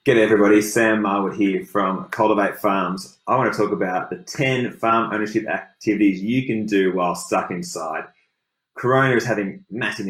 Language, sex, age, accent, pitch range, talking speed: English, male, 20-39, Australian, 90-110 Hz, 165 wpm